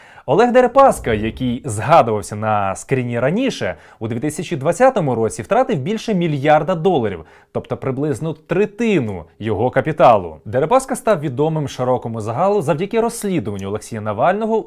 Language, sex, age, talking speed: Ukrainian, male, 20-39, 115 wpm